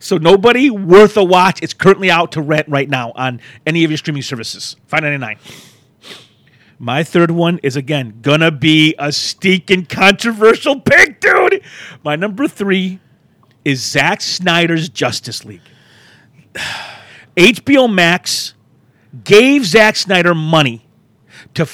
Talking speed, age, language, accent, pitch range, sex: 130 wpm, 40-59, English, American, 145-195 Hz, male